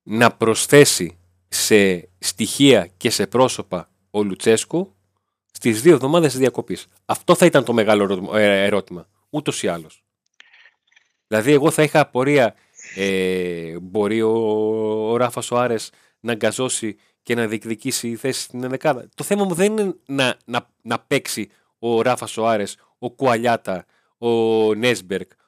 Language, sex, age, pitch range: Greek, male, 40-59, 105-130 Hz